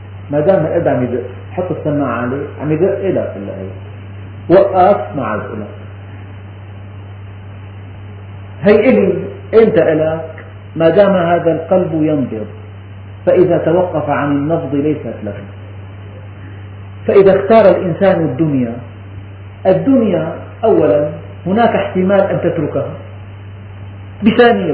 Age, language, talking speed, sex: 40-59, Arabic, 115 wpm, male